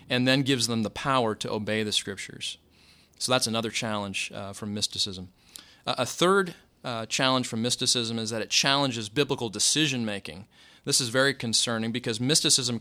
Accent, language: American, English